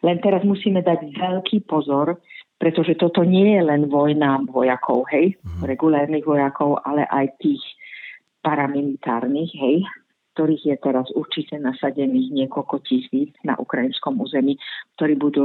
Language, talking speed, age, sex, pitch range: Czech, 130 wpm, 50-69, female, 135-170 Hz